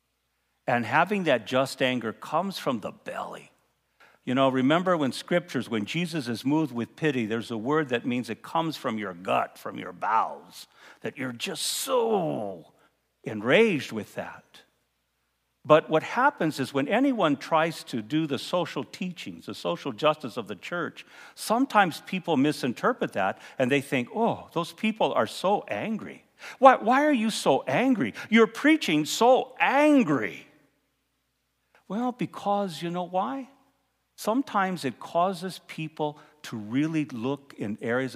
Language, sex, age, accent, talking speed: English, male, 50-69, American, 150 wpm